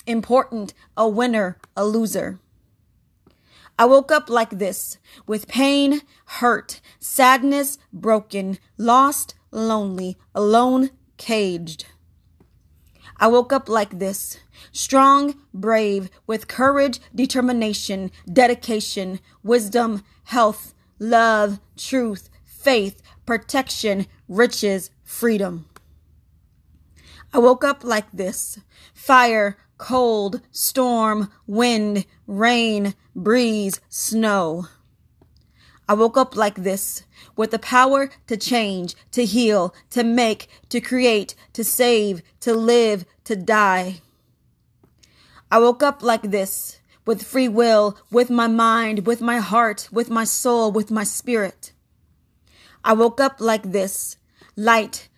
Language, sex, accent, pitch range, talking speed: English, female, American, 195-240 Hz, 105 wpm